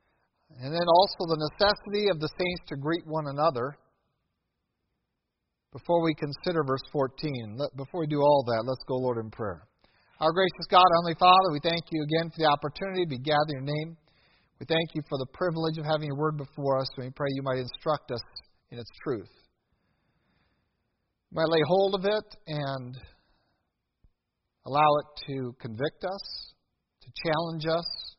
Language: English